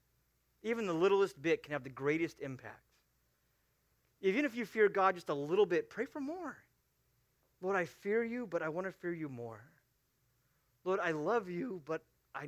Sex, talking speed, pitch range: male, 185 wpm, 155-225 Hz